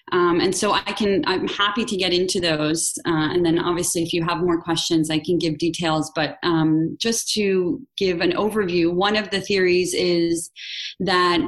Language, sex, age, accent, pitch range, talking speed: English, female, 20-39, American, 170-220 Hz, 195 wpm